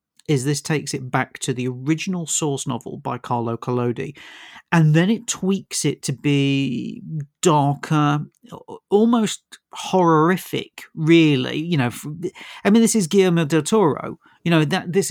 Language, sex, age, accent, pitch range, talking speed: English, male, 40-59, British, 135-170 Hz, 145 wpm